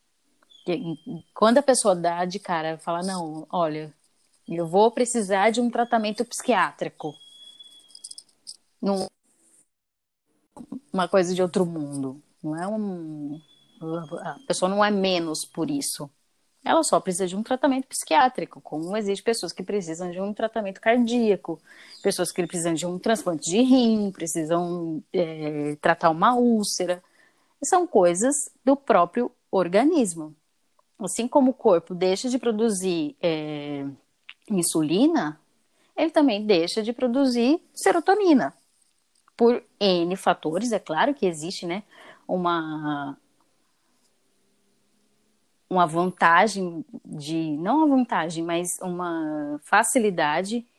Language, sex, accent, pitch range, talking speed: Portuguese, female, Brazilian, 165-240 Hz, 110 wpm